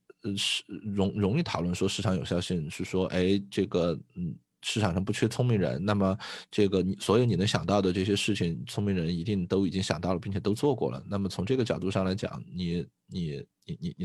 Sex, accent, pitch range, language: male, native, 95-125 Hz, Chinese